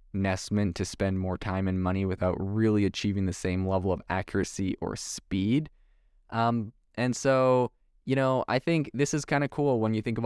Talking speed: 195 wpm